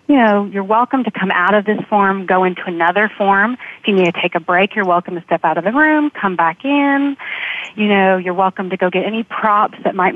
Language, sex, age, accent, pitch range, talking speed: English, female, 30-49, American, 180-215 Hz, 255 wpm